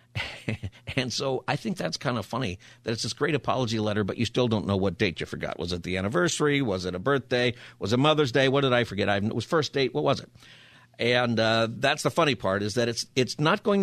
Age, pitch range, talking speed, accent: 50-69, 110-140 Hz, 255 wpm, American